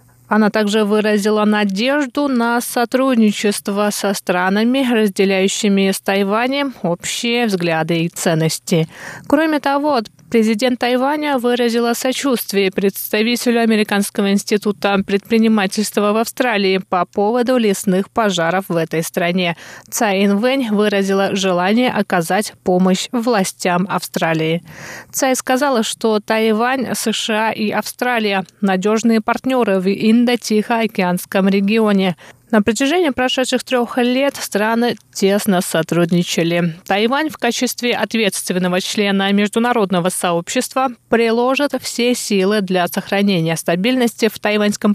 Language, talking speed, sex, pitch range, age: Russian, 105 wpm, female, 190-240 Hz, 20-39